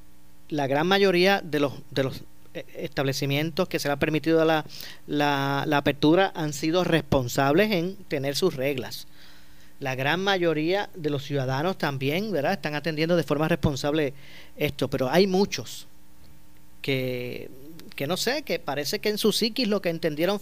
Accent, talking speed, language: American, 160 wpm, Spanish